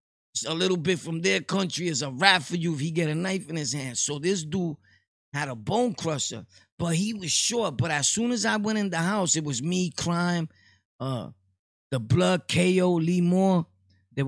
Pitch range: 135-185 Hz